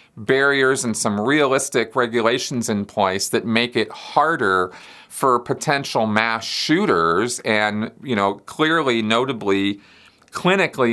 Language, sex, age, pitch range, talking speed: English, male, 40-59, 100-135 Hz, 115 wpm